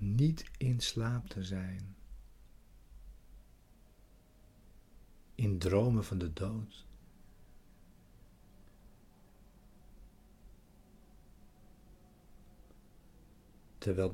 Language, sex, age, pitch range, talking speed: Dutch, male, 60-79, 95-110 Hz, 45 wpm